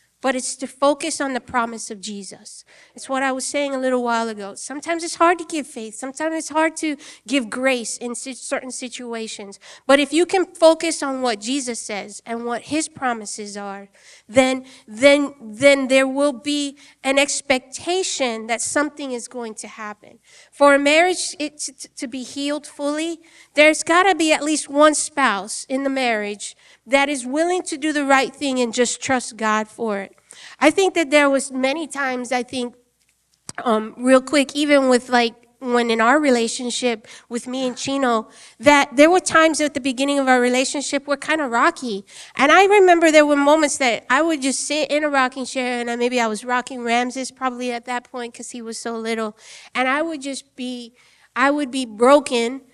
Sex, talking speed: female, 190 wpm